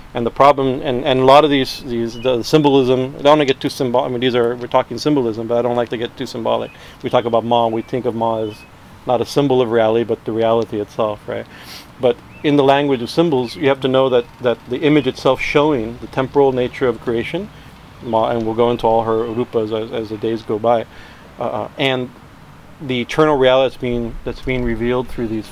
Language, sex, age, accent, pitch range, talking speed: English, male, 40-59, American, 115-130 Hz, 240 wpm